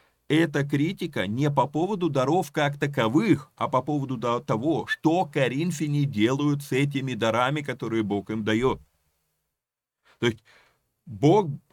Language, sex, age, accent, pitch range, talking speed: Russian, male, 30-49, native, 115-145 Hz, 130 wpm